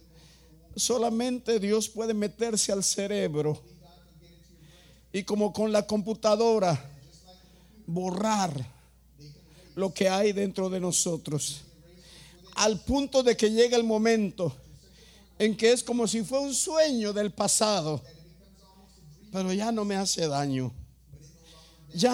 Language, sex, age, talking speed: English, male, 50-69, 115 wpm